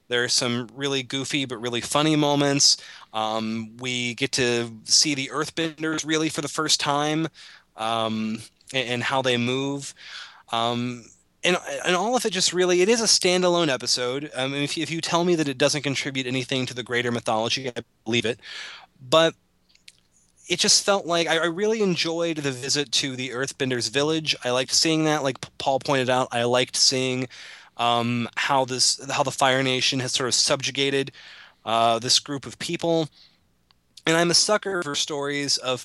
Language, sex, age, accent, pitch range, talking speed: English, male, 20-39, American, 120-160 Hz, 180 wpm